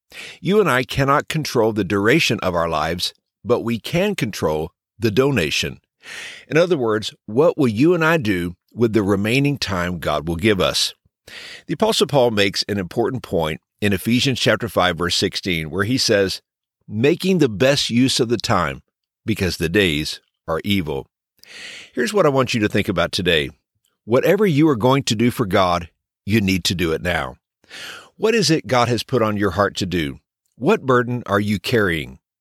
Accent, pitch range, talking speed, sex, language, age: American, 95-140 Hz, 185 wpm, male, English, 50-69